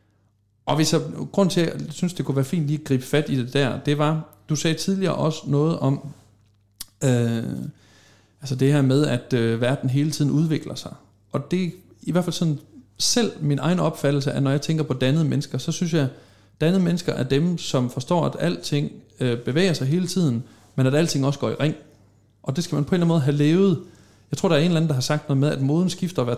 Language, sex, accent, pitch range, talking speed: Danish, male, native, 125-155 Hz, 245 wpm